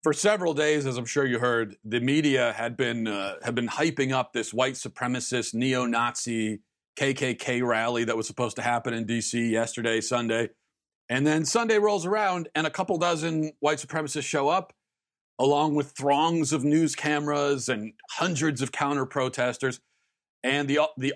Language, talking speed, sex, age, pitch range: English, 165 wpm, male, 40-59, 120-140 Hz